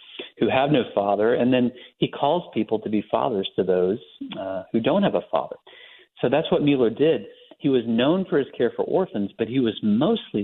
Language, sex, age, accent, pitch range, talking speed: English, male, 40-59, American, 100-135 Hz, 215 wpm